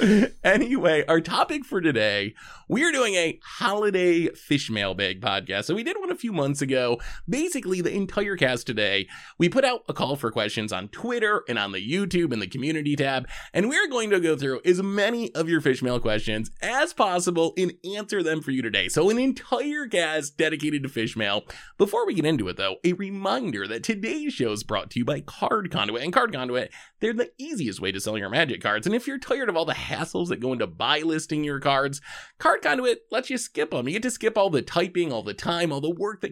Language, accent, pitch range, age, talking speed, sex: English, American, 135-225 Hz, 20-39, 230 wpm, male